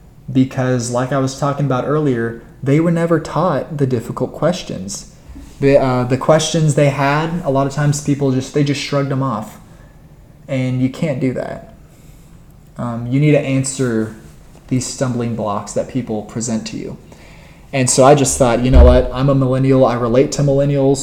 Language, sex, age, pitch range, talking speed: English, male, 20-39, 120-140 Hz, 175 wpm